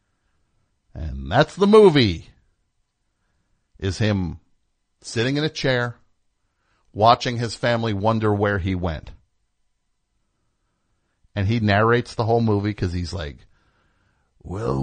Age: 50-69